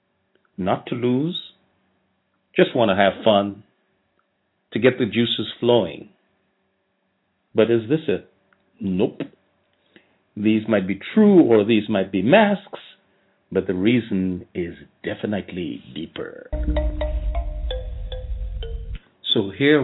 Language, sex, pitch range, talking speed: English, male, 95-125 Hz, 105 wpm